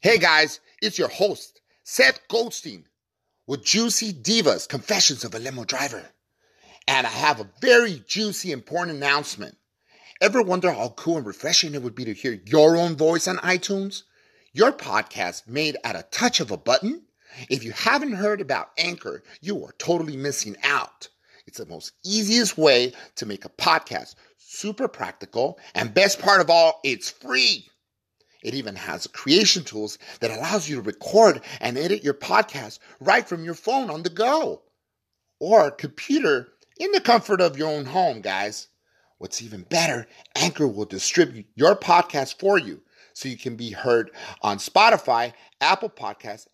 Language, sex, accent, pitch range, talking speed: English, male, American, 130-210 Hz, 165 wpm